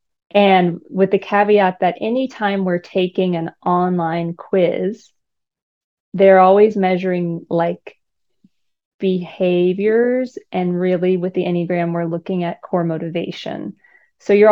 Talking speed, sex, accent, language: 115 wpm, female, American, English